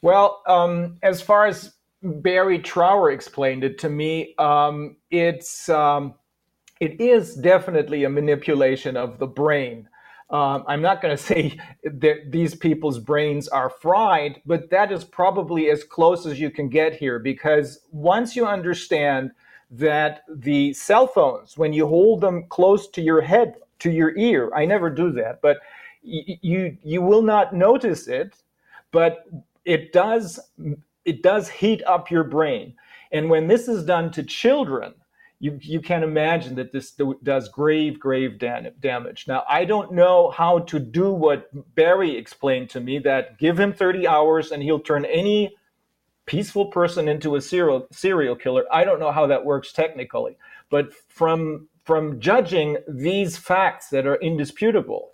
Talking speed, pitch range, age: 160 wpm, 145-185 Hz, 40-59